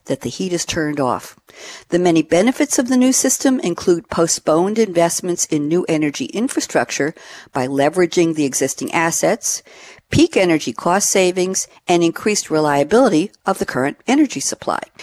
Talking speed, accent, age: 150 wpm, American, 60-79